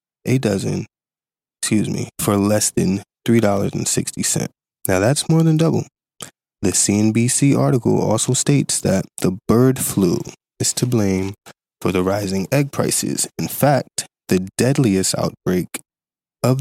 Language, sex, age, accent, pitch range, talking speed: English, male, 20-39, American, 100-130 Hz, 145 wpm